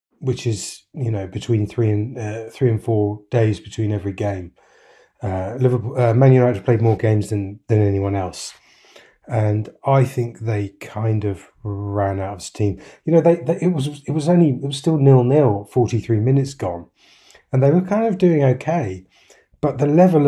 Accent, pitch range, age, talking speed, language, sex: British, 110-140 Hz, 30-49, 190 wpm, English, male